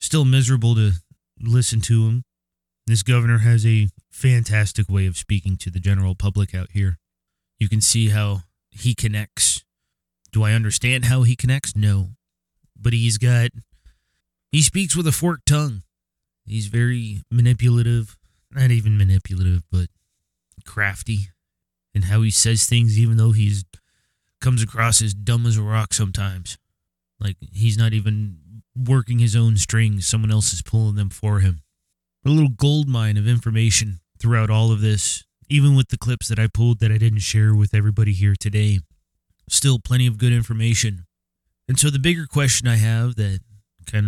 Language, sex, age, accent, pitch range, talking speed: English, male, 20-39, American, 100-120 Hz, 165 wpm